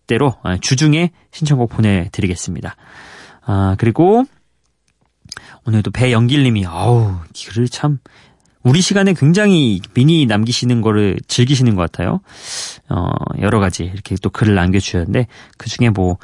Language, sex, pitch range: Korean, male, 105-145 Hz